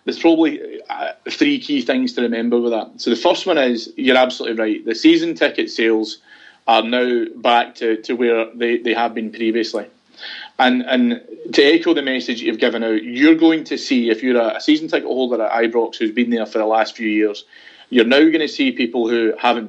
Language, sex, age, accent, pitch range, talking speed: English, male, 30-49, British, 110-145 Hz, 215 wpm